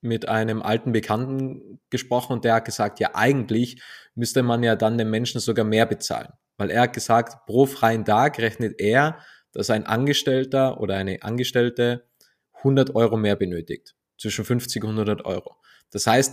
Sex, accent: male, German